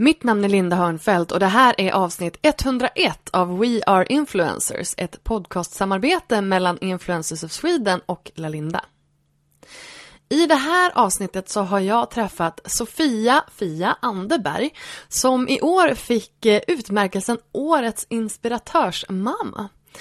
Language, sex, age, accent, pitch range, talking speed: Swedish, female, 20-39, native, 185-260 Hz, 125 wpm